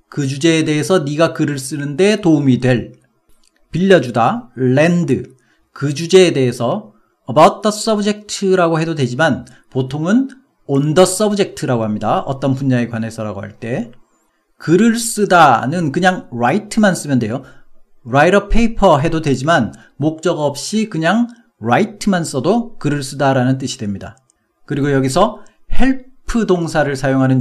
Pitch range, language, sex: 135-200 Hz, Korean, male